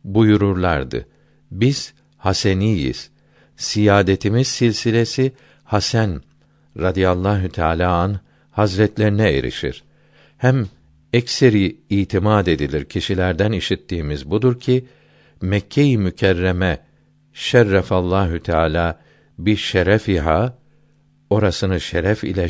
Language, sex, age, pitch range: Turkish, male, 60-79, 90-125 Hz